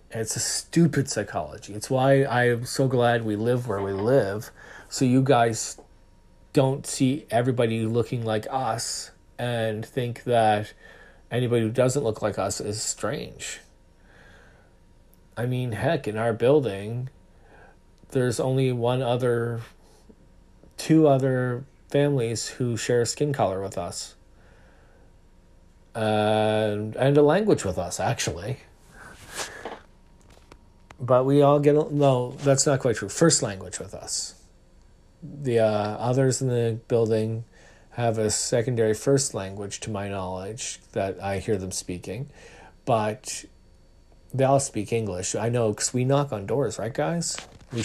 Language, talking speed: English, 135 wpm